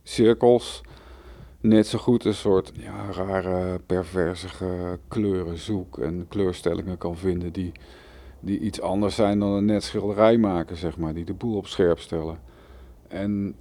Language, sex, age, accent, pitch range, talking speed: Dutch, male, 50-69, Dutch, 90-110 Hz, 145 wpm